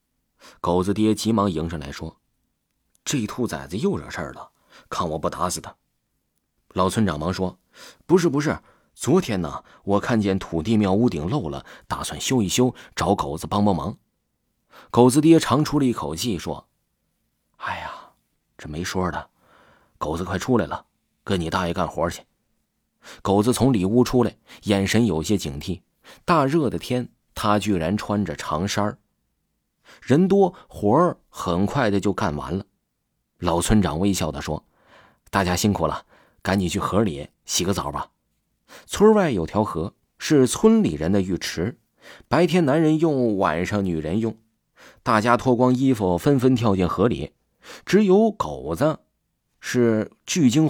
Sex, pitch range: male, 90-125 Hz